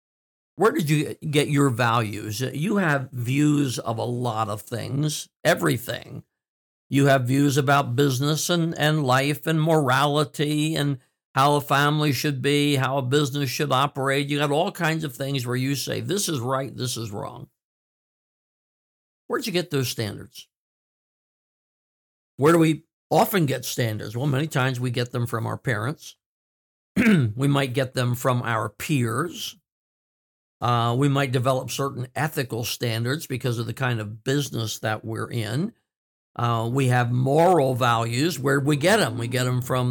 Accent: American